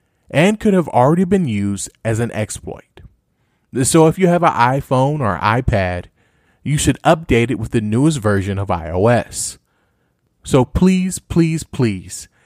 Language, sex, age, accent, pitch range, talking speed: English, male, 30-49, American, 100-135 Hz, 150 wpm